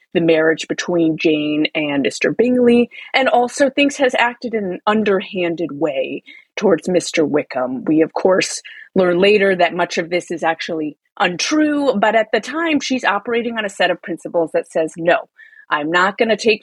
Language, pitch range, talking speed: English, 165-245 Hz, 180 wpm